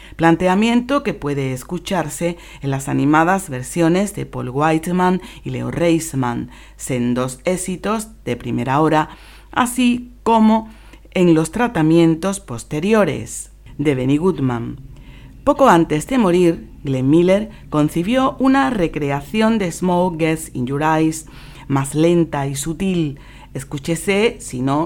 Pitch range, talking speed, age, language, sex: 135-185 Hz, 120 wpm, 40-59, Spanish, female